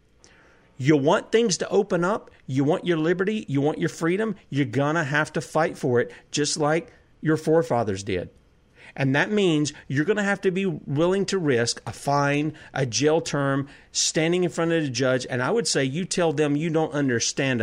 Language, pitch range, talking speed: English, 130-170 Hz, 205 wpm